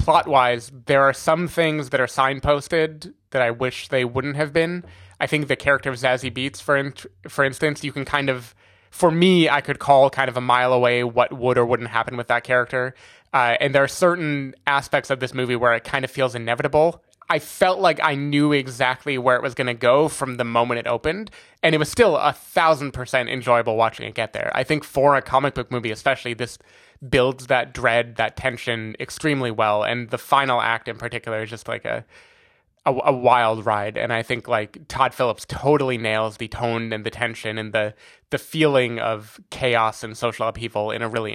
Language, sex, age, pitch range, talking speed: English, male, 20-39, 120-140 Hz, 210 wpm